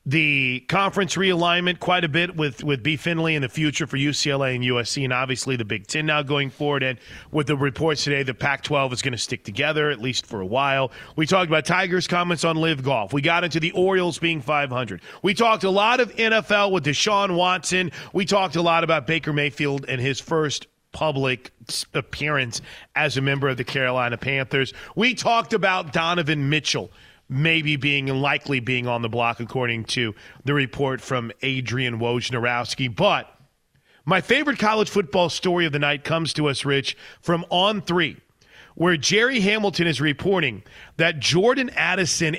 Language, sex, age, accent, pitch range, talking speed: English, male, 40-59, American, 135-180 Hz, 185 wpm